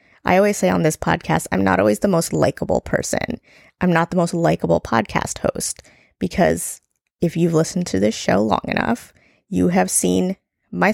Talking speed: 180 wpm